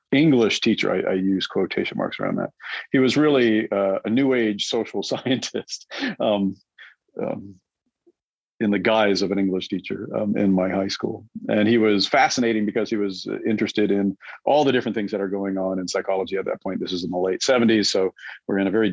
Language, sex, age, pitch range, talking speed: English, male, 50-69, 95-115 Hz, 205 wpm